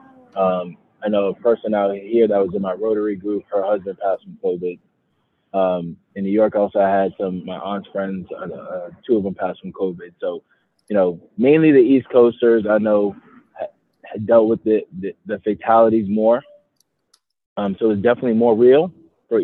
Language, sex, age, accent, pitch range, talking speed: English, male, 20-39, American, 95-115 Hz, 190 wpm